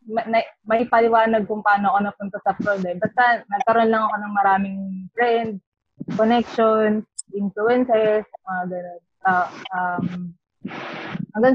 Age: 20-39